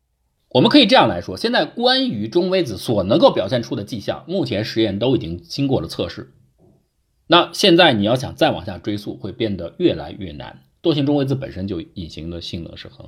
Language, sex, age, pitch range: Chinese, male, 50-69, 95-135 Hz